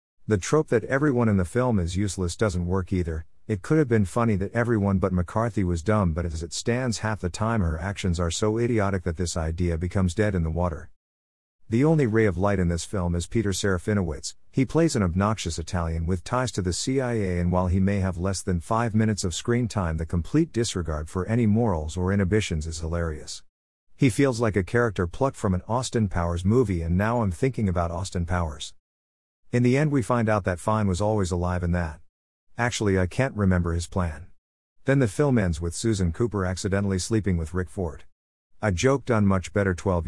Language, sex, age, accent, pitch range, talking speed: English, male, 50-69, American, 85-115 Hz, 210 wpm